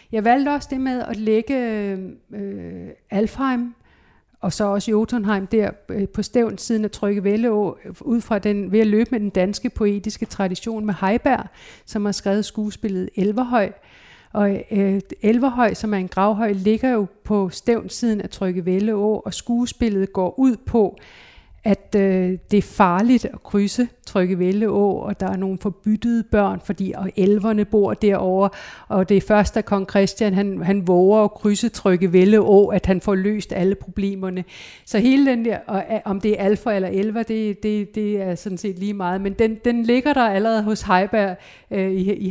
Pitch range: 190-215 Hz